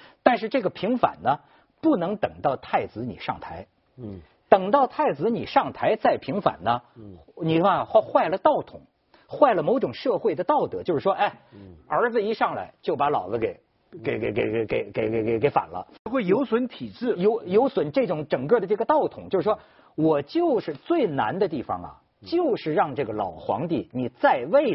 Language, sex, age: Chinese, male, 50-69